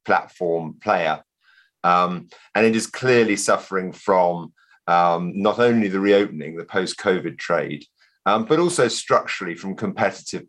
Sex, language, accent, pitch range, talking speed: male, English, British, 90-115 Hz, 130 wpm